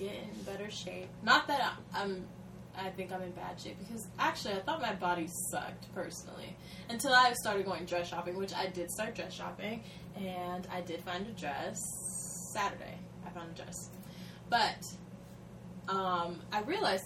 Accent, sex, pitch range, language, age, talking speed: American, female, 180-200 Hz, English, 10-29, 170 wpm